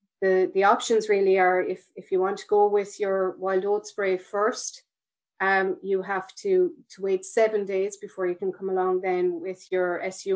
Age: 30-49